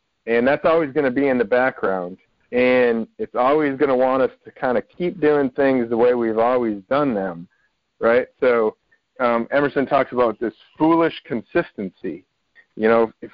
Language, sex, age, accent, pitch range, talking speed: English, male, 40-59, American, 115-145 Hz, 180 wpm